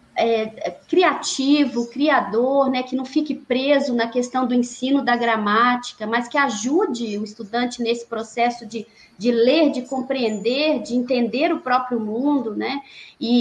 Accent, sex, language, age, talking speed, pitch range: Brazilian, female, Portuguese, 20-39, 145 wpm, 230-275 Hz